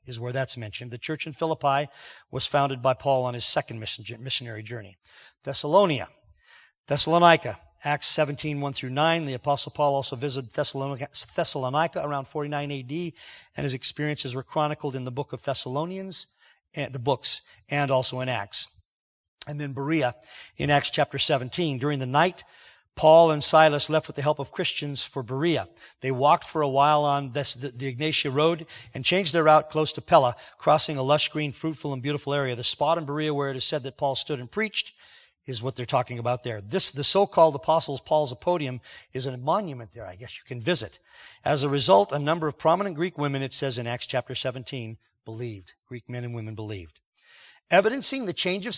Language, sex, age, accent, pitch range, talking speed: English, male, 40-59, American, 130-155 Hz, 190 wpm